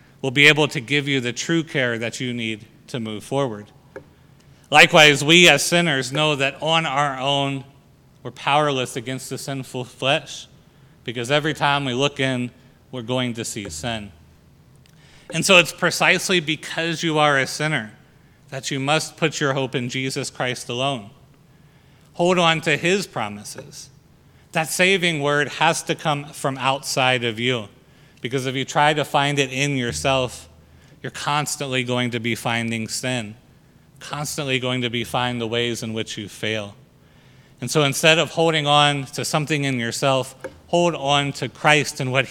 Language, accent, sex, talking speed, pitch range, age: English, American, male, 165 wpm, 125-150 Hz, 40-59